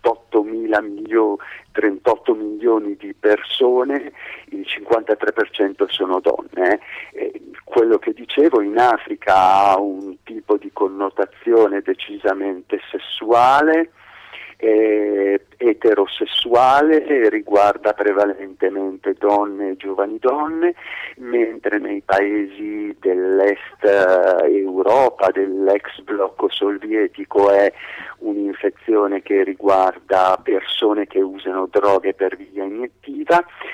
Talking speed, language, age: 80 wpm, Italian, 50-69